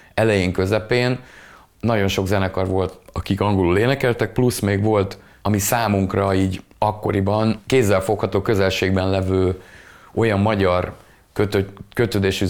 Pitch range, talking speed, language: 95-110 Hz, 110 wpm, Hungarian